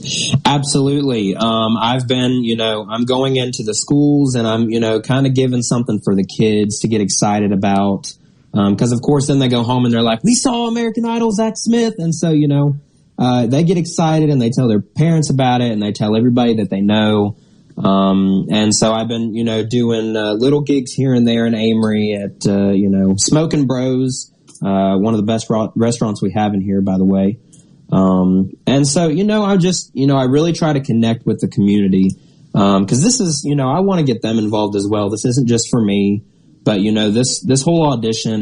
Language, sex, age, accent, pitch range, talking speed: English, male, 20-39, American, 105-140 Hz, 225 wpm